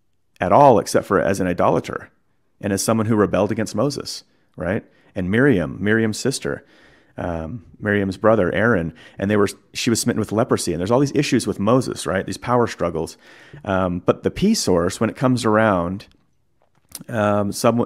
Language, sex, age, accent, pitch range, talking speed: English, male, 30-49, American, 90-110 Hz, 180 wpm